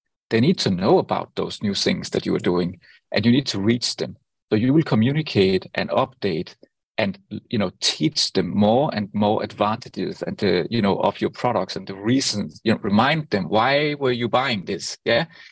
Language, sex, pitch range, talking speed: English, male, 100-120 Hz, 205 wpm